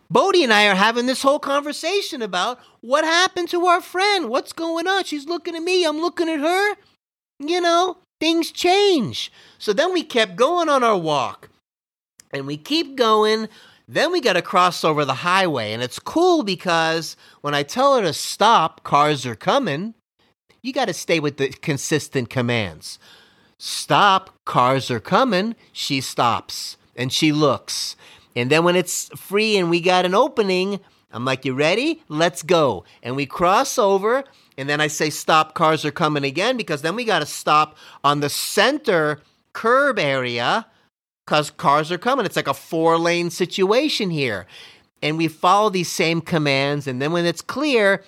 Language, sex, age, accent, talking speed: English, male, 30-49, American, 170 wpm